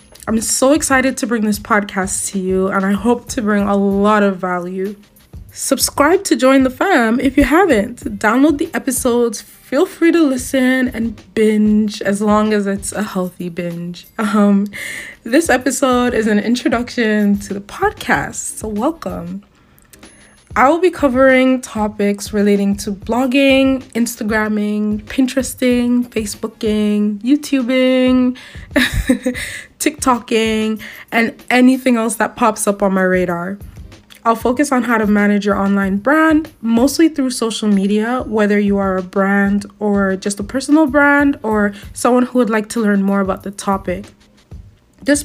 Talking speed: 145 wpm